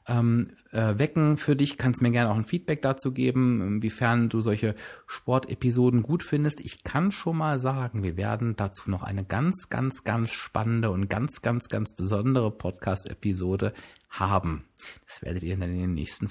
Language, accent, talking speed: German, German, 160 wpm